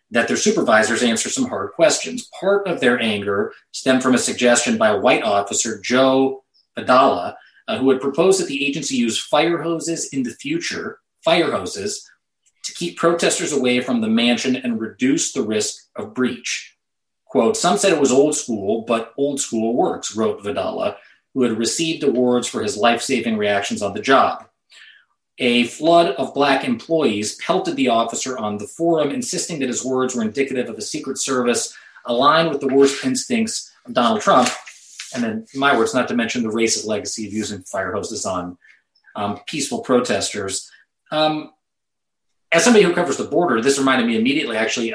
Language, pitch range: English, 115-165 Hz